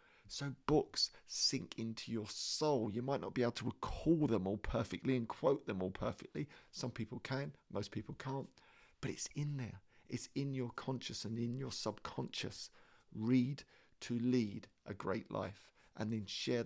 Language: English